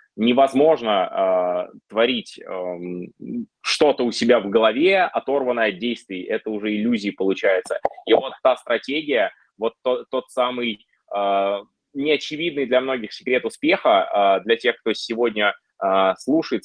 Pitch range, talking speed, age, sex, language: 100-135 Hz, 135 wpm, 20-39, male, Russian